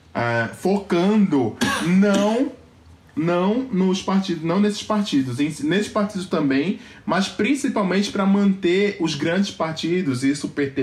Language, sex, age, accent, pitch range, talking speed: Portuguese, male, 20-39, Brazilian, 140-190 Hz, 105 wpm